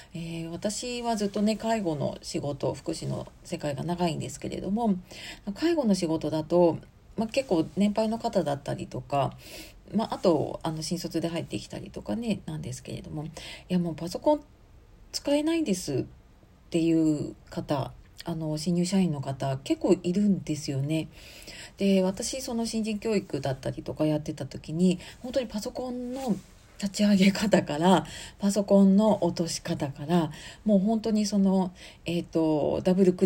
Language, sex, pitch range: Japanese, female, 160-210 Hz